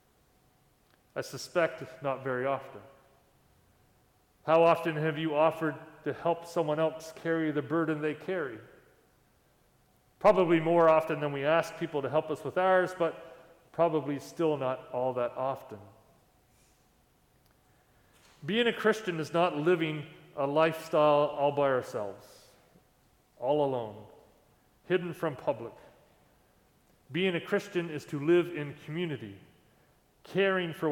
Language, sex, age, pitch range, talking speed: English, male, 40-59, 145-175 Hz, 125 wpm